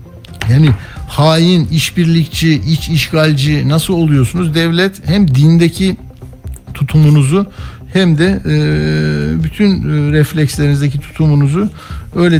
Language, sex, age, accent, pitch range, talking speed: Turkish, male, 60-79, native, 140-180 Hz, 90 wpm